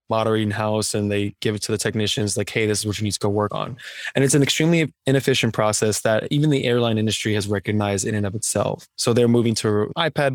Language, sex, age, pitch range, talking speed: English, male, 20-39, 105-125 Hz, 245 wpm